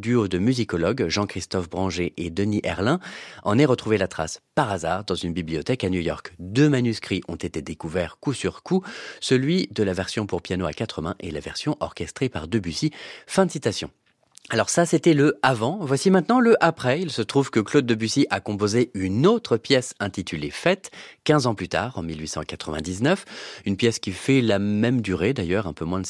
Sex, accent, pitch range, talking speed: male, French, 95-145 Hz, 205 wpm